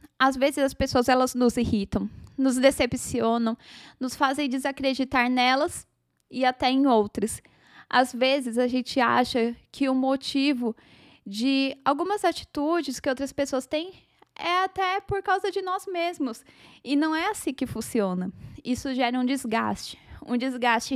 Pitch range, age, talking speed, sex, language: 250-295 Hz, 10-29, 145 wpm, female, Portuguese